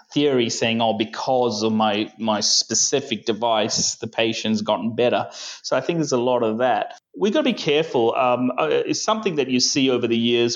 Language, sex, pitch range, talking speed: English, male, 110-130 Hz, 200 wpm